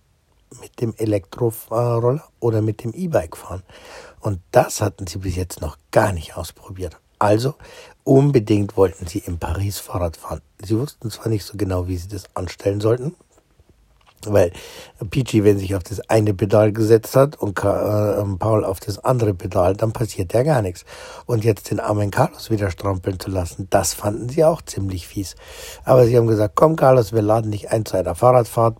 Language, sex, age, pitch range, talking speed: German, male, 60-79, 95-120 Hz, 180 wpm